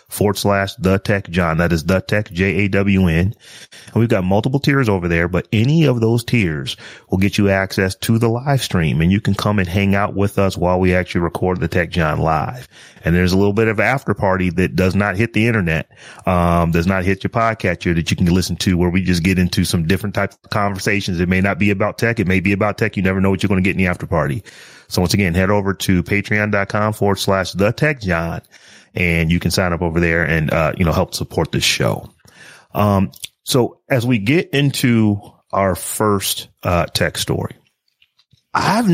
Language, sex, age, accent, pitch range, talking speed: English, male, 30-49, American, 90-110 Hz, 220 wpm